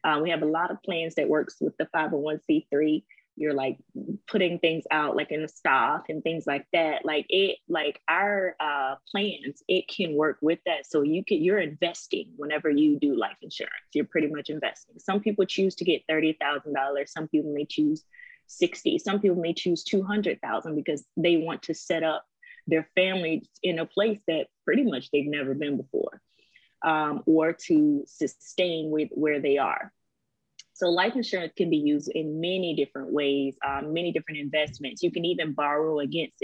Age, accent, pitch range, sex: 20-39, American, 150-190 Hz, female